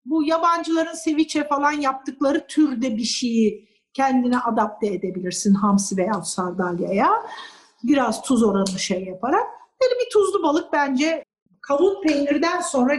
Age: 50-69